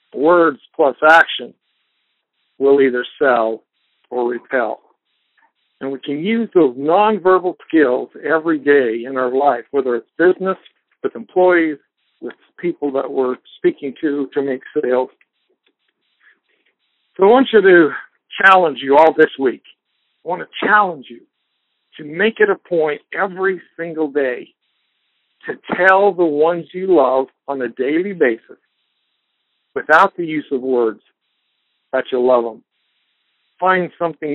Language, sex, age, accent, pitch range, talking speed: English, male, 60-79, American, 135-175 Hz, 135 wpm